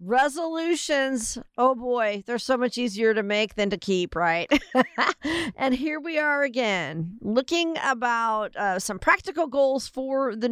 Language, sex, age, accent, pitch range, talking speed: English, female, 50-69, American, 195-265 Hz, 150 wpm